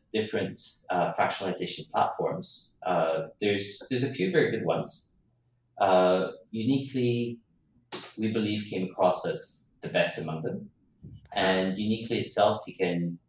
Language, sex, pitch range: Chinese, male, 80-120 Hz